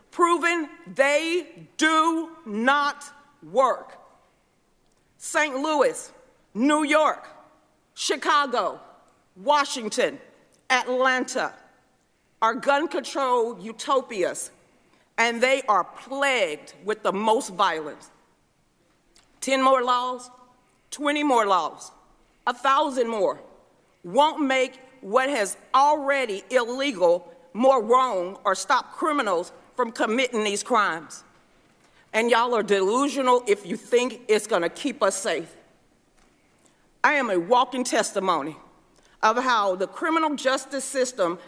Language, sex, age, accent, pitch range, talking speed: English, female, 40-59, American, 205-280 Hz, 100 wpm